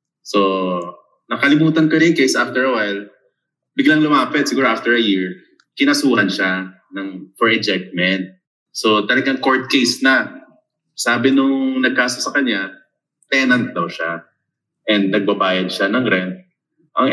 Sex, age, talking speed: male, 20-39, 135 wpm